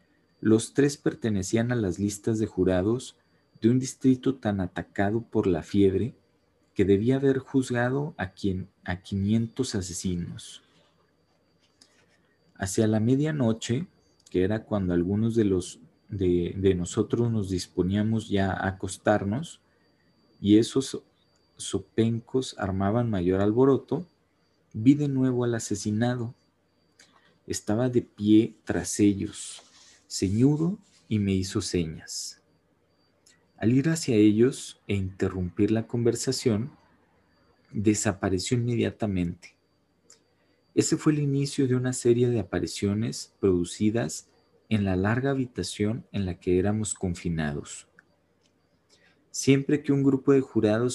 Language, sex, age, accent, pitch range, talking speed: Spanish, male, 40-59, Mexican, 95-120 Hz, 115 wpm